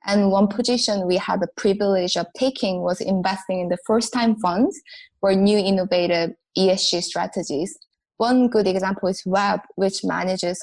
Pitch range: 180-215 Hz